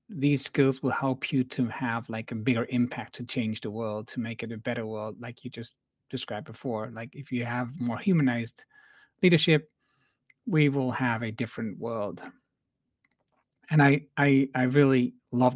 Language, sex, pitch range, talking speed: English, male, 120-140 Hz, 175 wpm